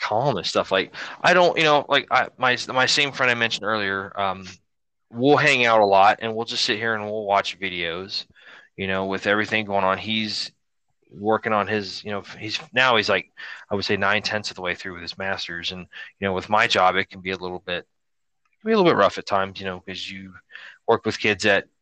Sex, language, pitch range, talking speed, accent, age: male, English, 100-140 Hz, 240 wpm, American, 20-39